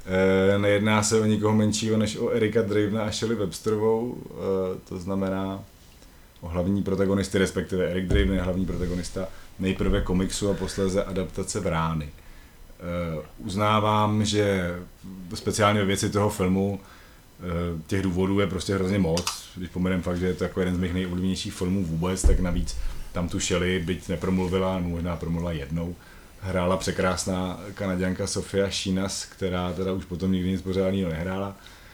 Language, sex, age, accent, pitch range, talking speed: Czech, male, 30-49, native, 90-100 Hz, 155 wpm